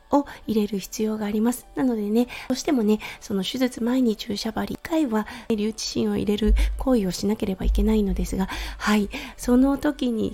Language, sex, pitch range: Japanese, female, 205-265 Hz